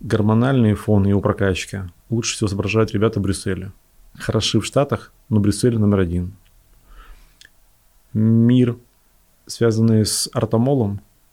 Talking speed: 115 wpm